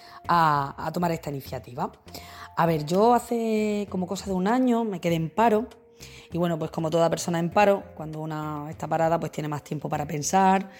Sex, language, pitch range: female, Spanish, 150-195 Hz